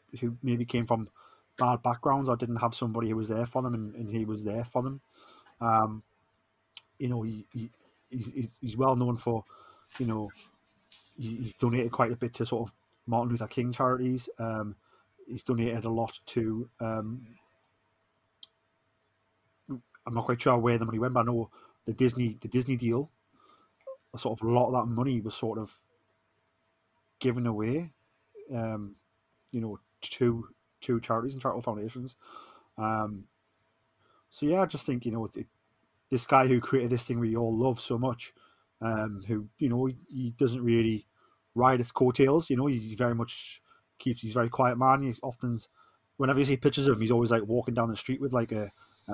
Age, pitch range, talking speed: 30-49, 110-130 Hz, 190 wpm